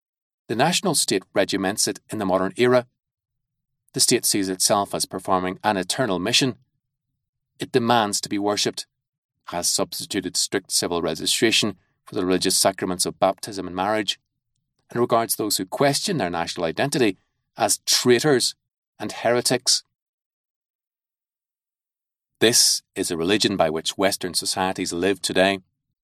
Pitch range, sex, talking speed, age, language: 95-135 Hz, male, 135 wpm, 30-49, English